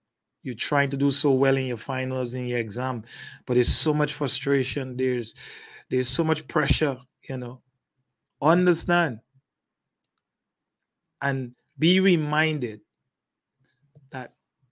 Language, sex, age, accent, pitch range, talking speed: English, male, 30-49, Nigerian, 130-170 Hz, 120 wpm